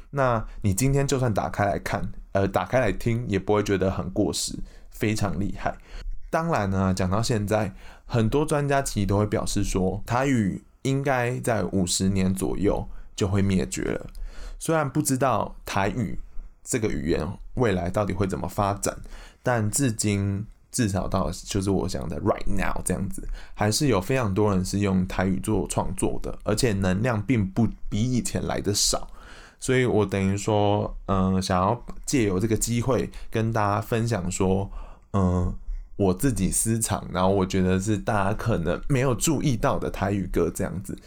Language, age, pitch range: Chinese, 20-39, 95-115 Hz